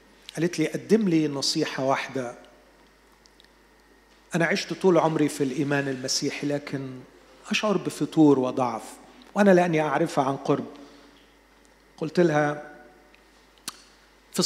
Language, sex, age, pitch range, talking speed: Arabic, male, 40-59, 140-185 Hz, 105 wpm